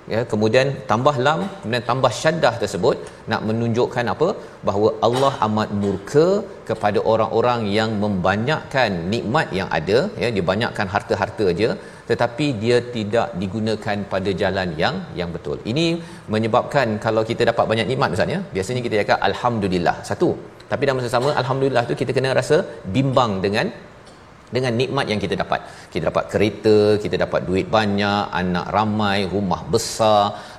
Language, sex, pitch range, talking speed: Malayalam, male, 100-130 Hz, 145 wpm